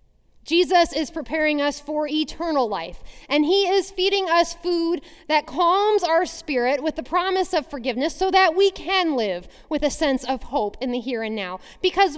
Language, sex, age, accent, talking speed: English, female, 30-49, American, 185 wpm